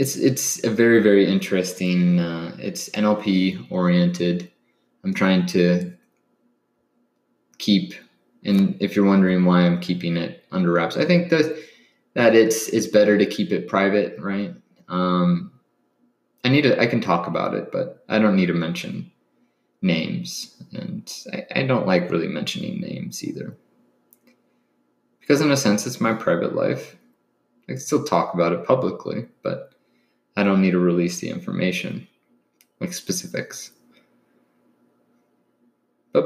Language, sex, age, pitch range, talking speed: English, male, 20-39, 90-120 Hz, 145 wpm